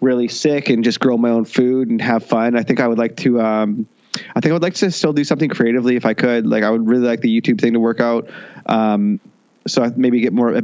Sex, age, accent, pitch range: male, 20-39, American, 120-145 Hz